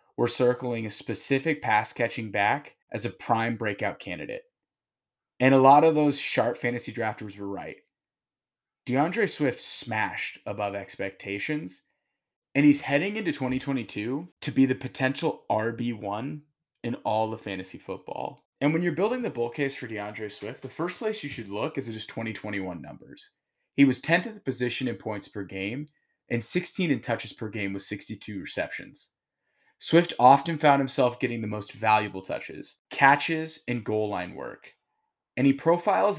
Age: 30-49